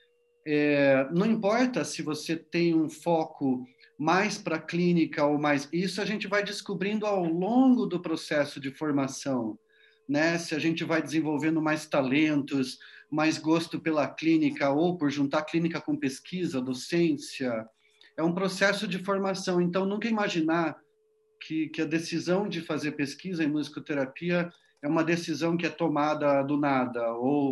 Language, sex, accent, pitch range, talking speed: Portuguese, male, Brazilian, 145-190 Hz, 150 wpm